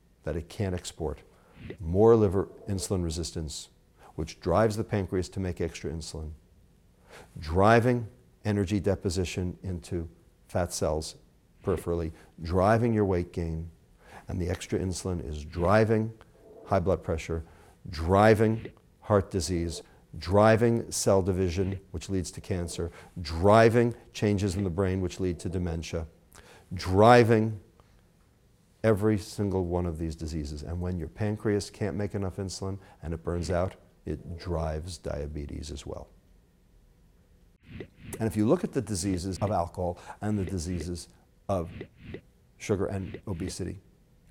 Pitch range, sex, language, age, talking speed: 85-105 Hz, male, English, 50-69, 130 wpm